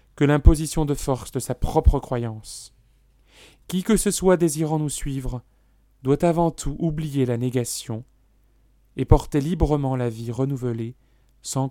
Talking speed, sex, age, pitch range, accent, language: 145 wpm, male, 30-49, 115-140 Hz, French, French